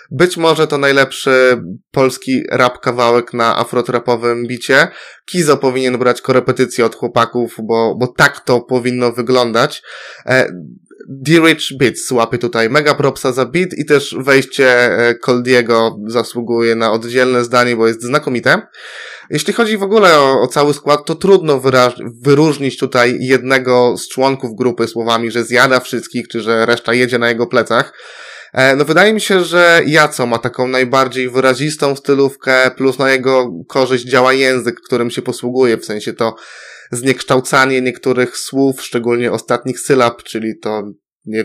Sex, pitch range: male, 120-145 Hz